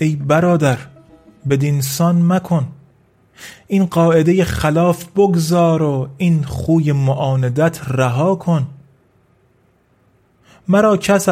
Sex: male